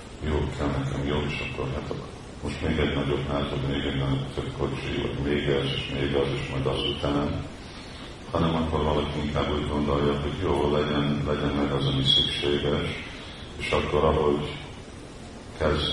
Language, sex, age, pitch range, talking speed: Hungarian, male, 40-59, 70-80 Hz, 175 wpm